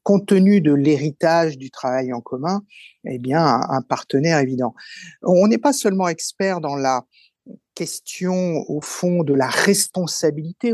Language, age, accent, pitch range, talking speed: French, 50-69, French, 130-165 Hz, 150 wpm